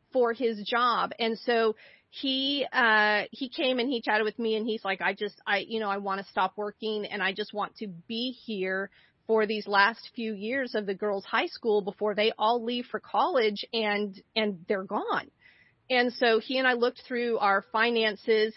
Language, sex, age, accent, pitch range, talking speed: English, female, 40-59, American, 205-235 Hz, 205 wpm